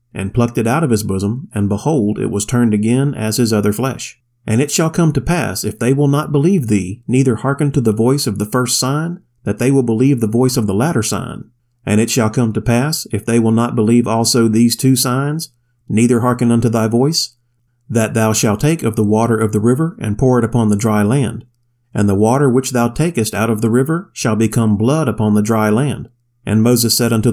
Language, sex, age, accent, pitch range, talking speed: English, male, 40-59, American, 110-130 Hz, 235 wpm